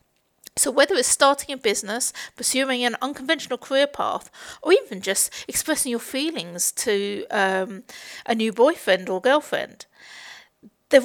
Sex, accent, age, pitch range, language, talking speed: female, British, 50-69, 225-275 Hz, English, 135 wpm